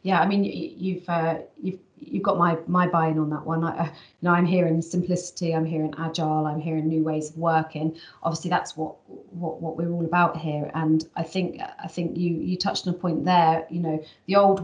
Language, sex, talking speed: English, female, 235 wpm